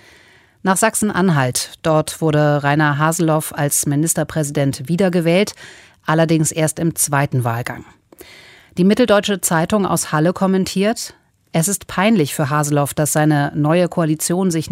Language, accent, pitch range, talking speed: German, German, 145-180 Hz, 120 wpm